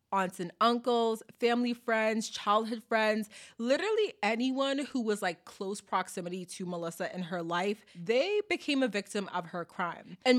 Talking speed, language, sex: 155 wpm, English, female